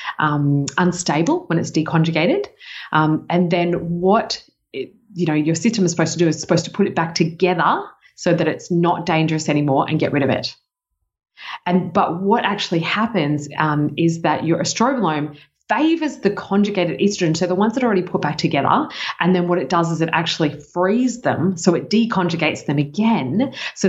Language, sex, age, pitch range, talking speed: English, female, 30-49, 155-185 Hz, 190 wpm